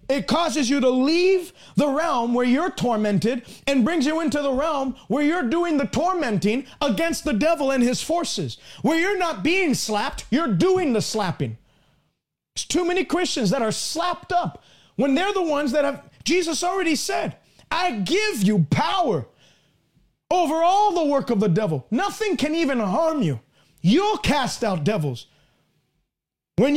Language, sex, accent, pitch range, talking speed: English, male, American, 215-325 Hz, 165 wpm